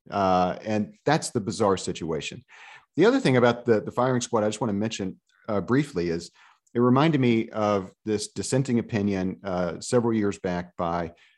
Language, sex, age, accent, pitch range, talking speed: English, male, 40-59, American, 95-120 Hz, 180 wpm